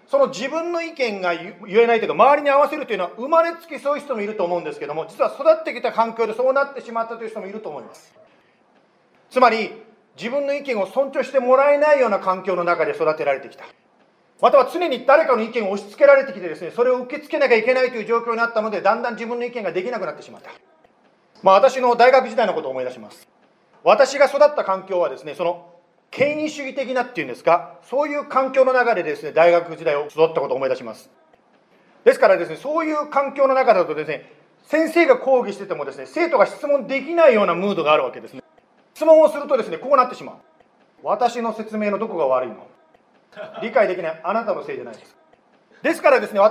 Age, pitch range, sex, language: 40-59, 210-285 Hz, male, Japanese